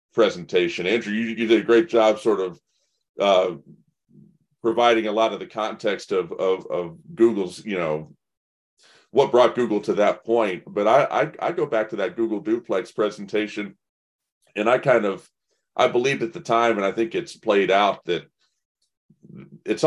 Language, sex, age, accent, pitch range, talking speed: English, male, 40-59, American, 85-115 Hz, 170 wpm